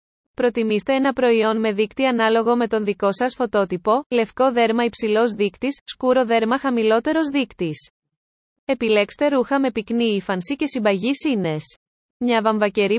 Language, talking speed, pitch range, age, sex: Greek, 135 wpm, 210-260 Hz, 20-39, female